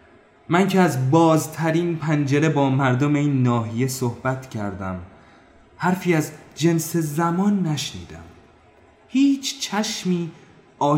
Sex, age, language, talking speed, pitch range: male, 30-49, Persian, 100 wpm, 110-150 Hz